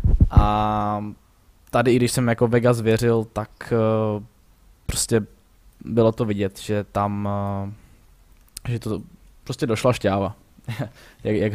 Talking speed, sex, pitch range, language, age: 110 wpm, male, 100-110 Hz, Czech, 10-29